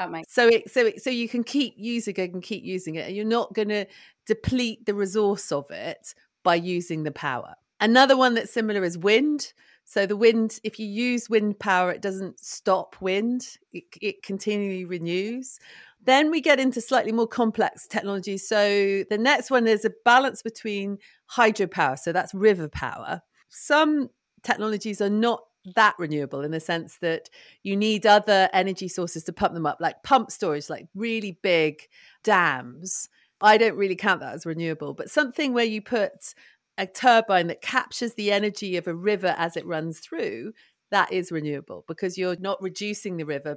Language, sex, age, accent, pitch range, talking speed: English, female, 40-59, British, 180-230 Hz, 180 wpm